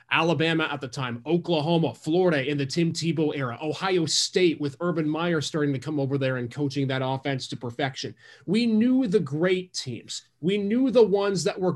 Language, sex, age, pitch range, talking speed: English, male, 30-49, 150-195 Hz, 195 wpm